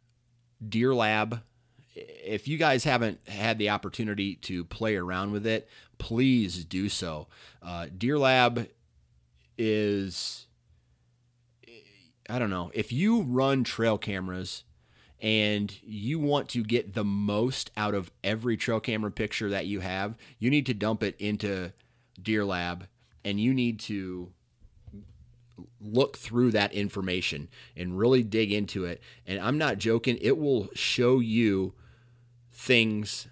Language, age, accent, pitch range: English, 30-49, American, 95-120 Hz